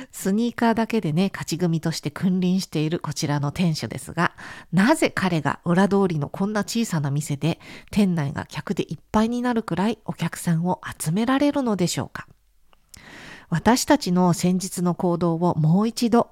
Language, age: Japanese, 50-69